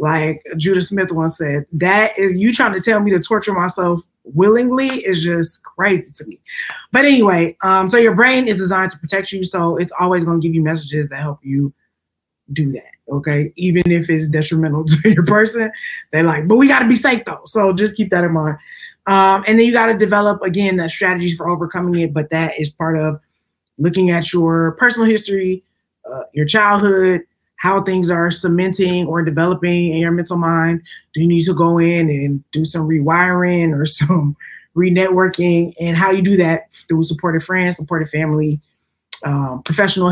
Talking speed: 195 wpm